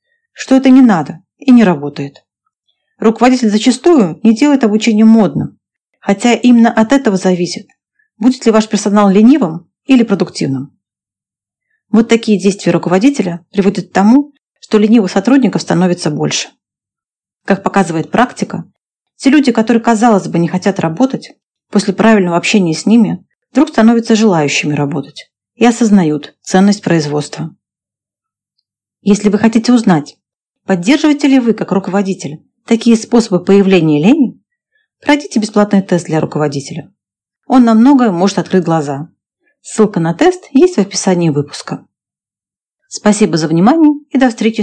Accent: native